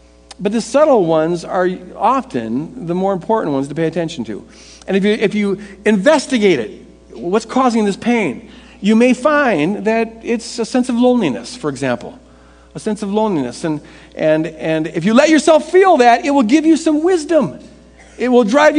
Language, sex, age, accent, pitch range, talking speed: English, male, 50-69, American, 190-260 Hz, 185 wpm